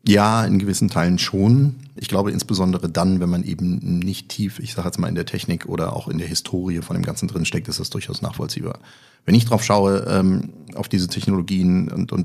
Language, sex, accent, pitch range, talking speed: German, male, German, 90-105 Hz, 220 wpm